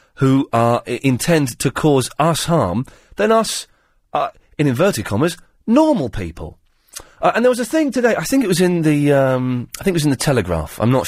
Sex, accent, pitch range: male, British, 105-180 Hz